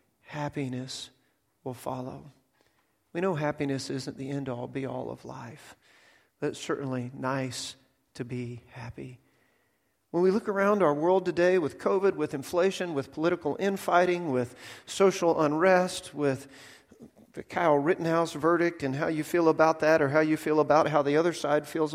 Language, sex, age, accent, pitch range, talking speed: English, male, 40-59, American, 130-175 Hz, 155 wpm